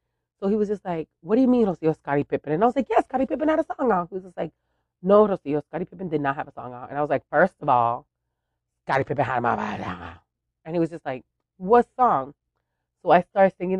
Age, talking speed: 30-49, 260 wpm